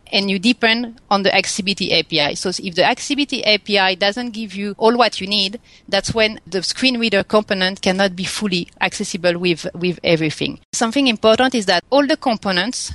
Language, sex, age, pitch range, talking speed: English, female, 30-49, 180-225 Hz, 180 wpm